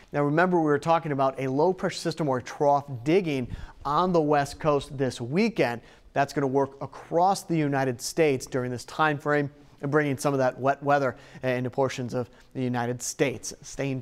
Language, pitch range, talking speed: English, 130-155 Hz, 195 wpm